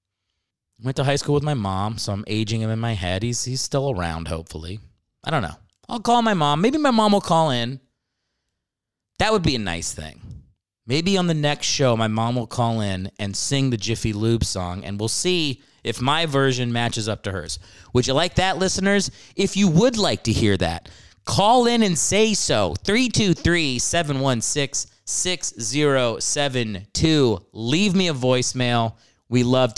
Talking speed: 175 wpm